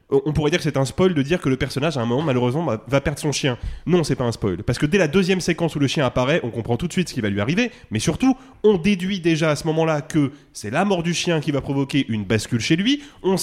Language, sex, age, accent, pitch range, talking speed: French, male, 20-39, French, 125-170 Hz, 300 wpm